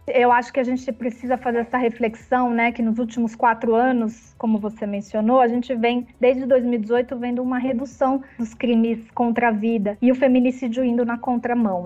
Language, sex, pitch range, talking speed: Portuguese, female, 225-260 Hz, 185 wpm